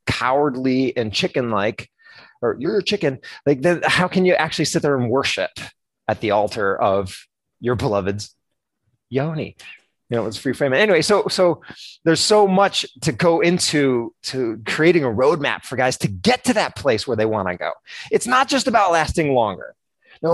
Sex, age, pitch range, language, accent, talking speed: male, 30-49, 110-160 Hz, English, American, 180 wpm